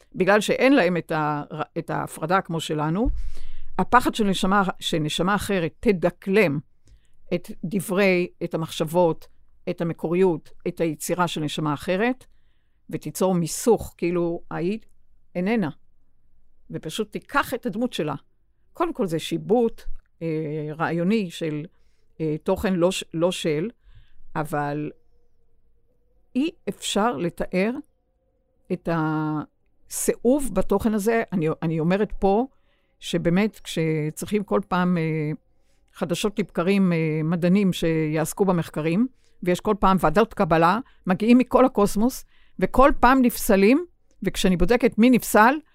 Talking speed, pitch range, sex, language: 115 wpm, 160-215 Hz, female, Hebrew